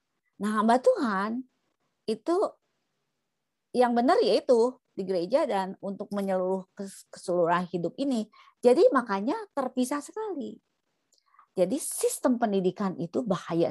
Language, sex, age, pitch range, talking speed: Indonesian, female, 30-49, 165-235 Hz, 105 wpm